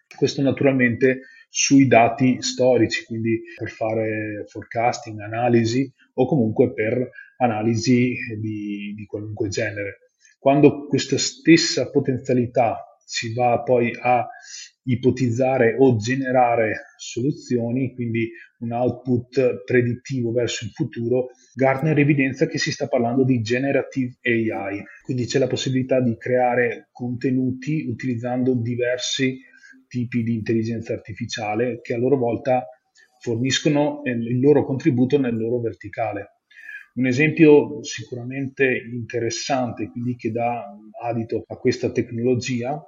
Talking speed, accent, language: 115 wpm, native, Italian